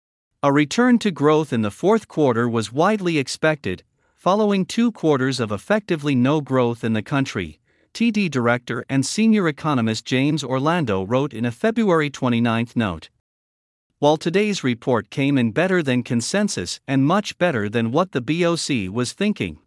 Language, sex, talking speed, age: English, male, 155 wpm, 50-69